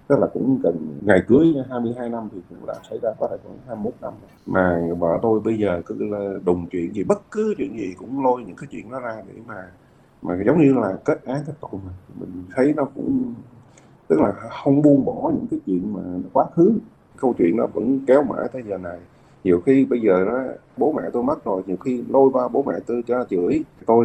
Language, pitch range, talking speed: Vietnamese, 115-160 Hz, 230 wpm